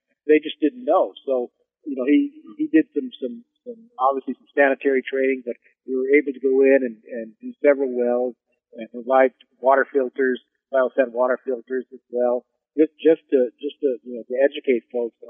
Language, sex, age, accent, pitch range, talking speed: English, male, 50-69, American, 120-155 Hz, 190 wpm